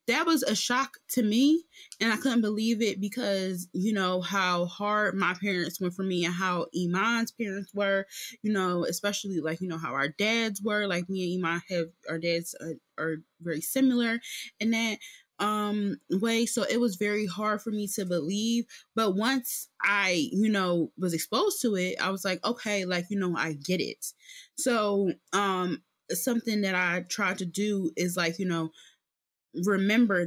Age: 20-39